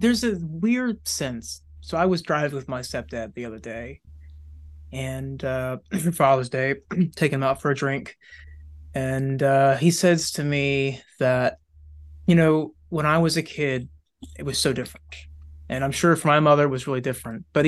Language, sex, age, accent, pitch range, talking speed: English, male, 20-39, American, 115-165 Hz, 180 wpm